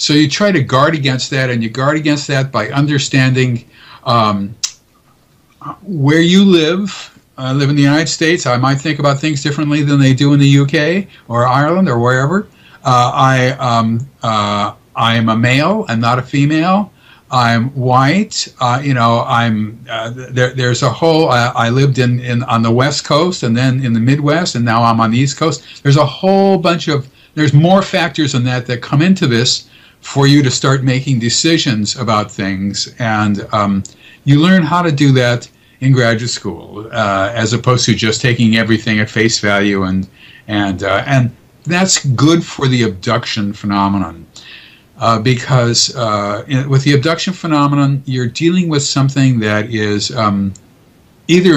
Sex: male